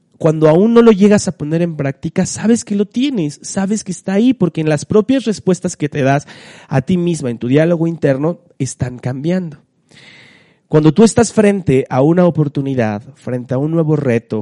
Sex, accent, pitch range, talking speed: male, Mexican, 125-155 Hz, 190 wpm